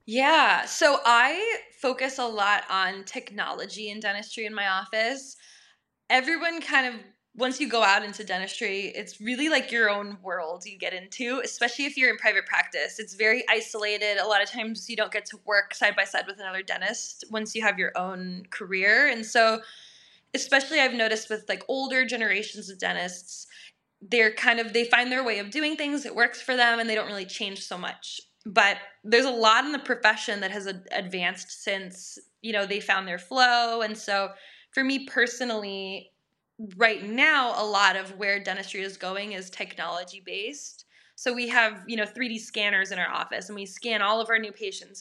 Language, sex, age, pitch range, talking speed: English, female, 20-39, 200-245 Hz, 190 wpm